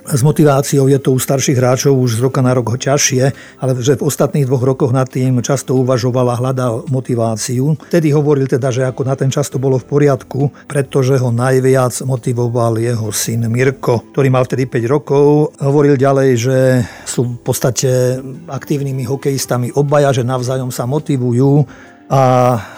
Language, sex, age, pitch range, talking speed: Slovak, male, 50-69, 125-140 Hz, 165 wpm